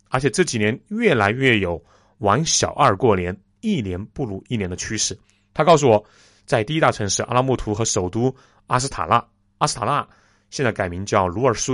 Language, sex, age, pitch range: Chinese, male, 30-49, 100-135 Hz